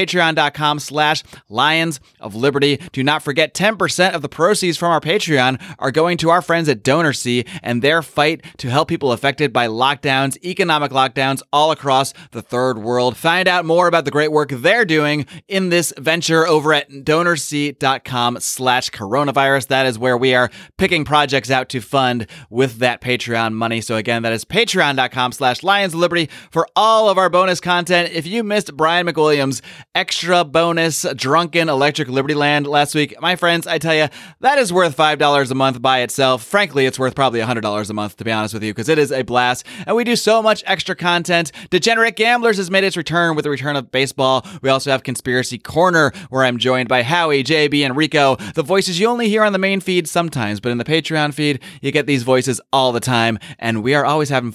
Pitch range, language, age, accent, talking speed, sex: 130-170 Hz, English, 30-49, American, 205 wpm, male